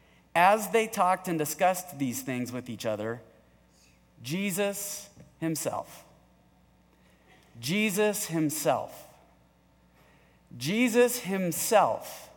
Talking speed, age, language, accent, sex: 80 wpm, 30-49, English, American, male